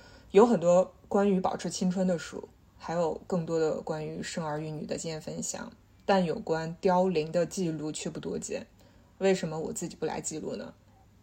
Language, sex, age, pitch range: Chinese, female, 20-39, 170-200 Hz